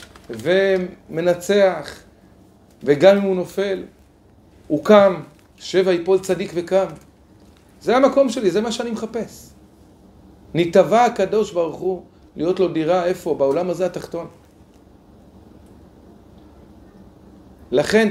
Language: Hebrew